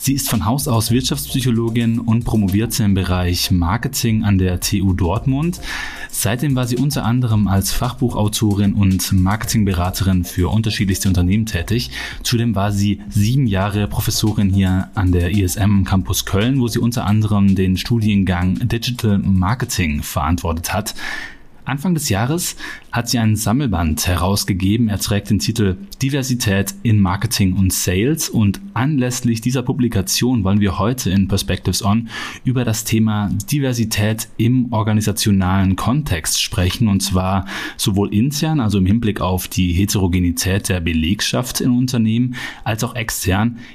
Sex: male